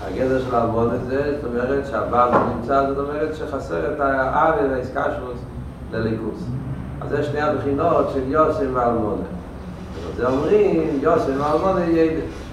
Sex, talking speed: male, 130 wpm